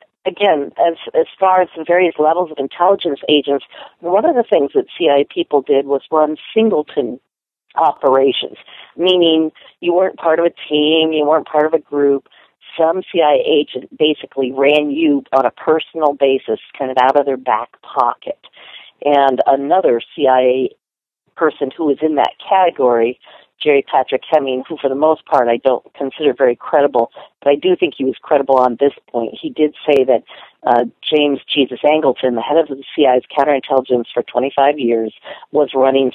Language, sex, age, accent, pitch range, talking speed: English, female, 50-69, American, 135-170 Hz, 175 wpm